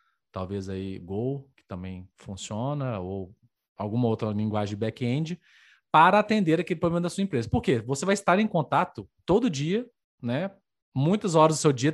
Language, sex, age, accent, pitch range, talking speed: Portuguese, male, 20-39, Brazilian, 125-180 Hz, 170 wpm